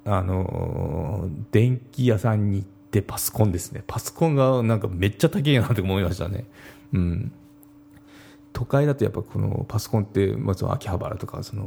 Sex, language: male, Japanese